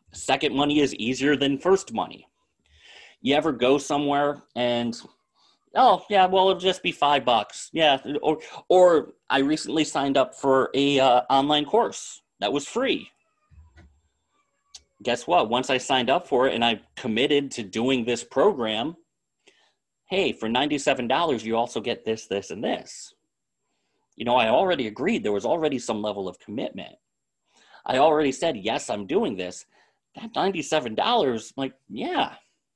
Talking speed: 155 wpm